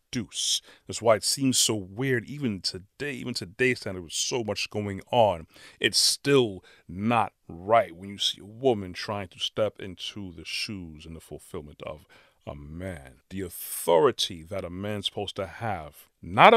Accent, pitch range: American, 95-125 Hz